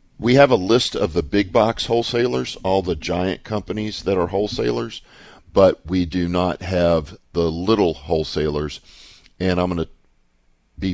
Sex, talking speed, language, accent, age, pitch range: male, 160 wpm, English, American, 50-69, 75-95 Hz